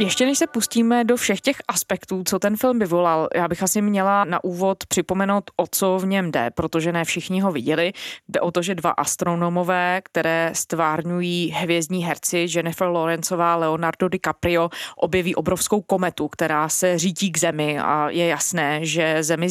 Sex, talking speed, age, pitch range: female, 175 wpm, 20-39, 170-190 Hz